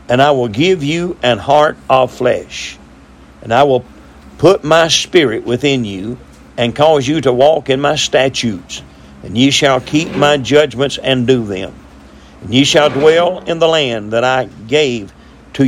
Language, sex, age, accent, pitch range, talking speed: English, male, 50-69, American, 105-145 Hz, 170 wpm